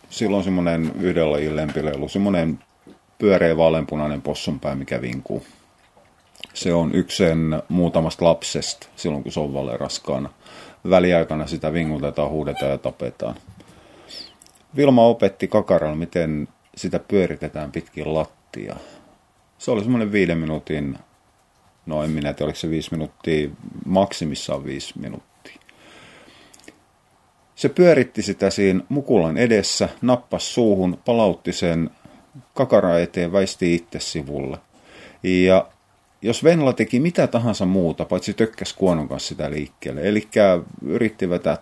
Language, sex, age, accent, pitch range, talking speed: Finnish, male, 30-49, native, 75-95 Hz, 120 wpm